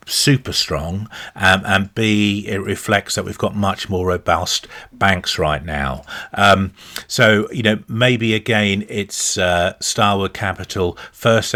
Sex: male